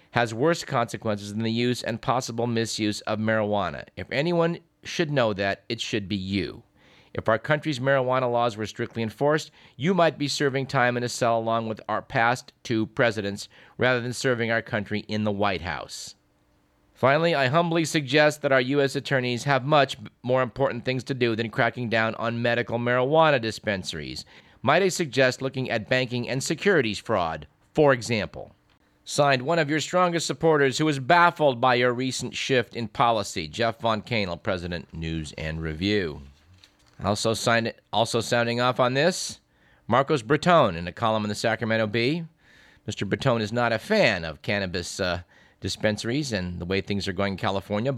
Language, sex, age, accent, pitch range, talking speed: English, male, 50-69, American, 105-140 Hz, 175 wpm